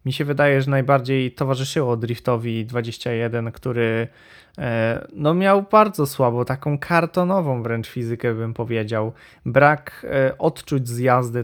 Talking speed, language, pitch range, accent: 115 wpm, Polish, 120-145 Hz, native